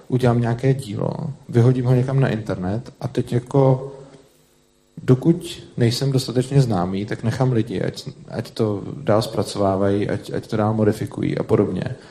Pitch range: 110-130 Hz